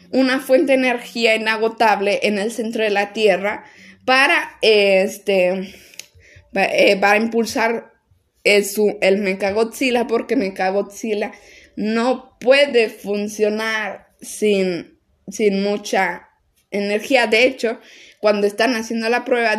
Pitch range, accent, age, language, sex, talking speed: 200-240 Hz, Mexican, 10-29, Spanish, female, 110 wpm